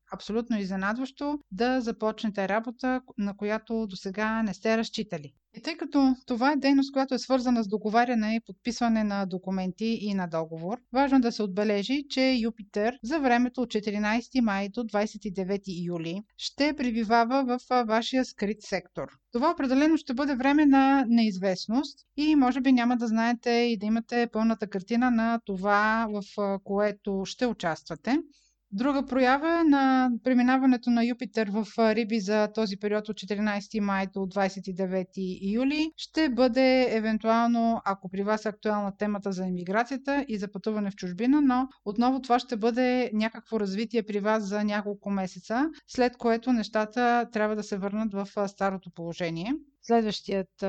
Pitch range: 200-250 Hz